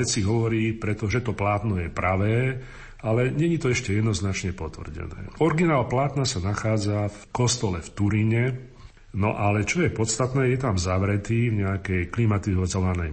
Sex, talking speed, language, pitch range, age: male, 145 wpm, Slovak, 95-115 Hz, 40-59